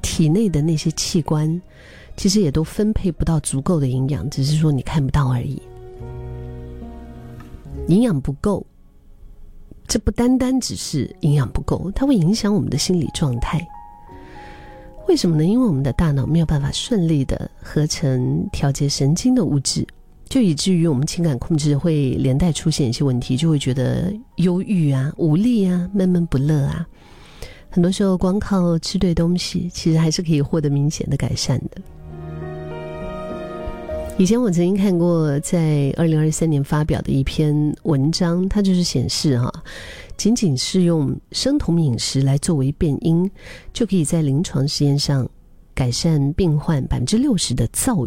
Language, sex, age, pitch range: Chinese, female, 40-59, 135-175 Hz